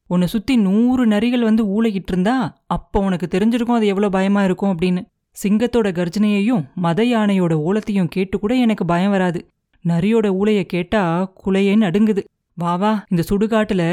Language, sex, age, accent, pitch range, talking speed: Tamil, female, 30-49, native, 180-220 Hz, 140 wpm